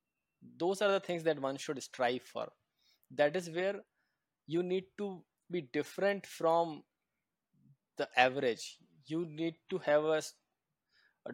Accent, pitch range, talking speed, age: Indian, 125-160 Hz, 140 wpm, 20-39